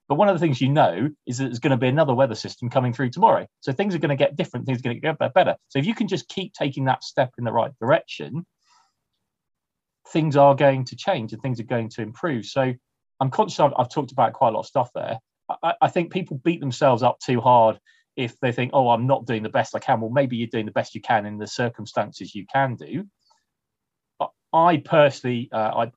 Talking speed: 245 wpm